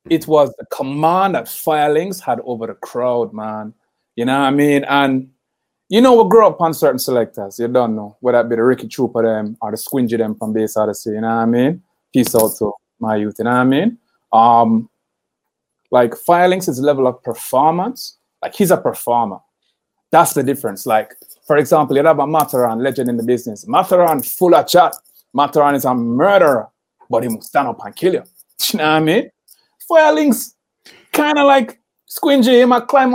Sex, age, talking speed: male, 30-49, 200 wpm